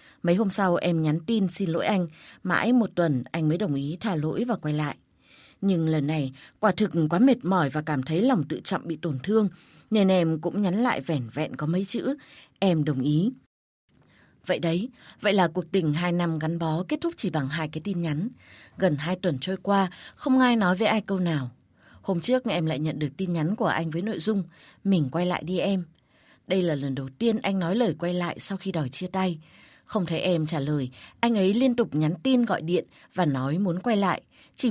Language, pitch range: Vietnamese, 160-205 Hz